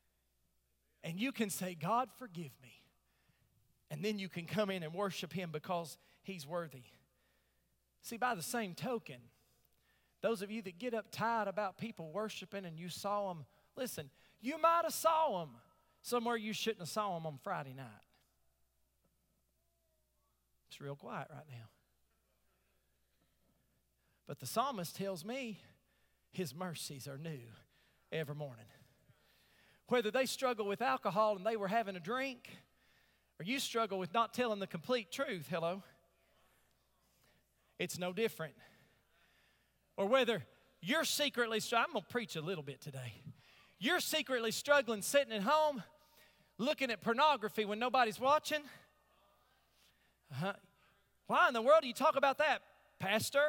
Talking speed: 145 wpm